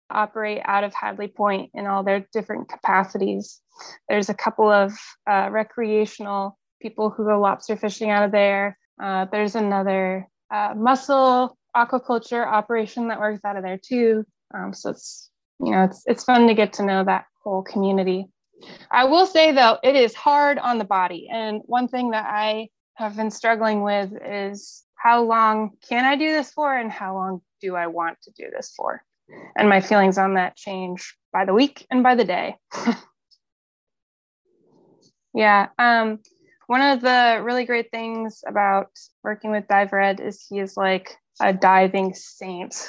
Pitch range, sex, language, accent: 195-235 Hz, female, English, American